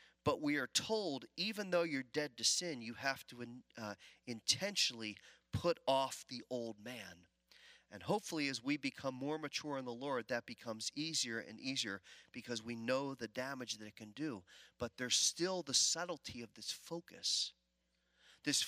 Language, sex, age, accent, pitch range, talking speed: English, male, 40-59, American, 120-150 Hz, 170 wpm